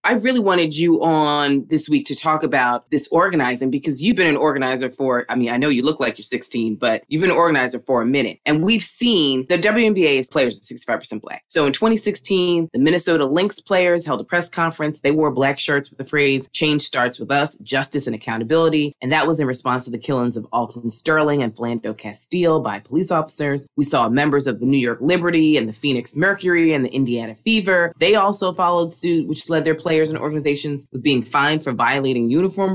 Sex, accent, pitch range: female, American, 135-190 Hz